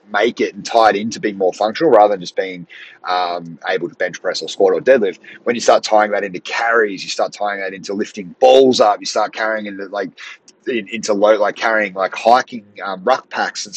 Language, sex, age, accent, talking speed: English, male, 30-49, Australian, 225 wpm